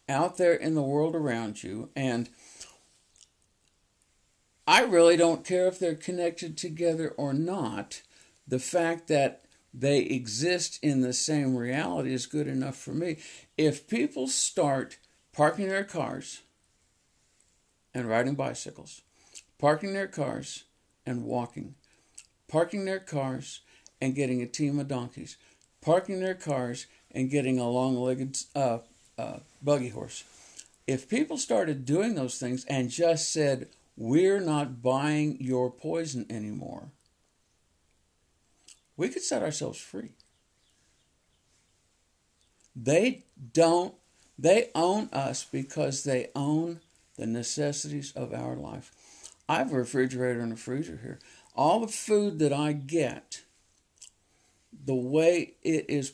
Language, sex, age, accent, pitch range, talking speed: English, male, 60-79, American, 125-160 Hz, 125 wpm